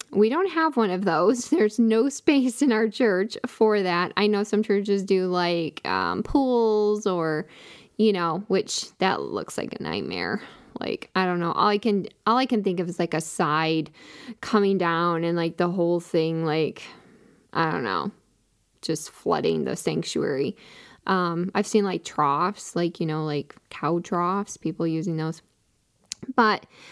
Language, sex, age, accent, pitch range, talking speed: English, female, 10-29, American, 180-225 Hz, 170 wpm